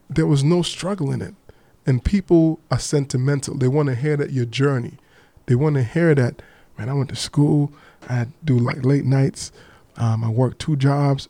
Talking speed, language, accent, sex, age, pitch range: 205 wpm, English, American, male, 20-39, 130-160 Hz